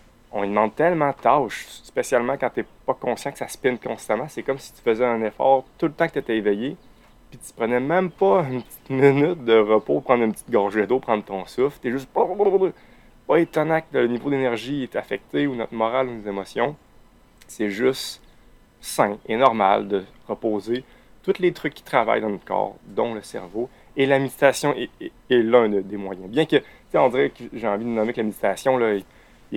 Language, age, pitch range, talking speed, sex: French, 30-49, 105-135 Hz, 215 wpm, male